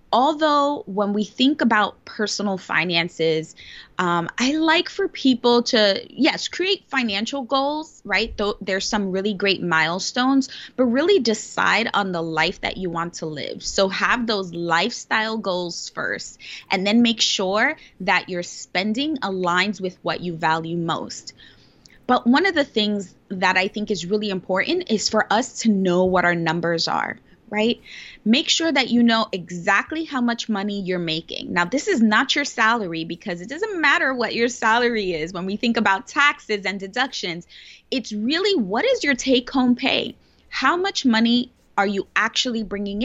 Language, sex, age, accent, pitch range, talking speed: English, female, 20-39, American, 190-260 Hz, 165 wpm